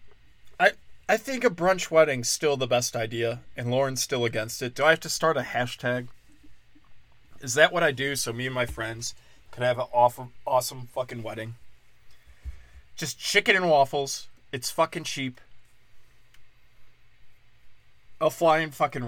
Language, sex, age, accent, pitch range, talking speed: English, male, 20-39, American, 120-150 Hz, 155 wpm